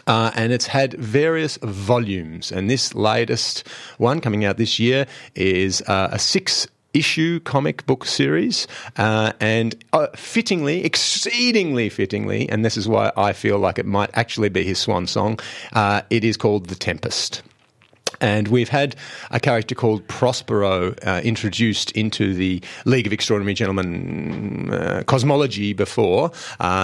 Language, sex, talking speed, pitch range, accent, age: English, male, 150 wpm, 100-125 Hz, Australian, 40-59